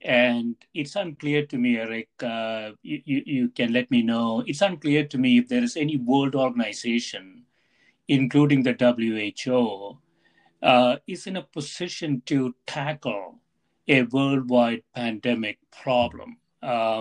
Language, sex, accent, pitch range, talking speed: English, male, Indian, 120-150 Hz, 130 wpm